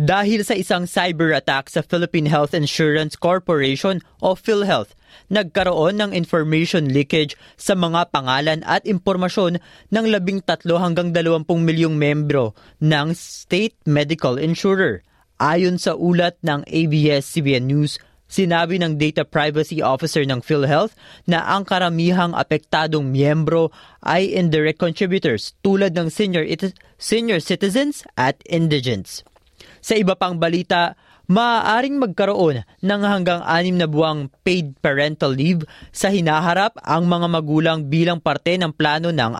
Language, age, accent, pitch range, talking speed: Filipino, 20-39, native, 150-185 Hz, 125 wpm